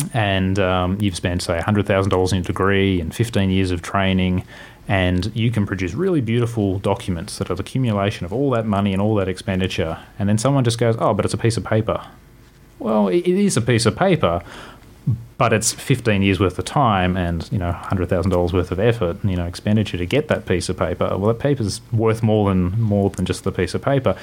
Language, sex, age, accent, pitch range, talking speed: English, male, 30-49, Australian, 90-115 Hz, 230 wpm